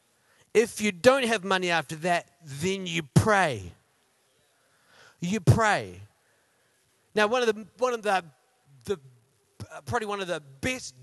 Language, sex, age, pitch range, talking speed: English, male, 30-49, 130-170 Hz, 135 wpm